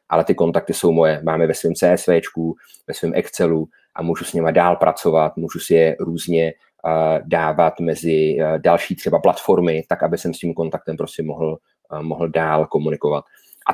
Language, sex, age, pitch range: Czech, male, 30-49, 80-85 Hz